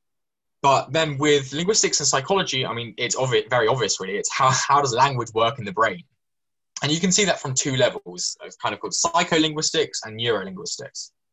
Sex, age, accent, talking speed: male, 10-29, British, 200 wpm